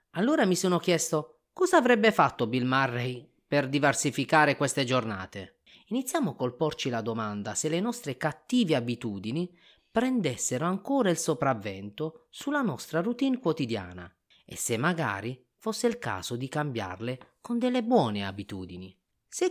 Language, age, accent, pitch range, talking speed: Italian, 30-49, native, 110-170 Hz, 135 wpm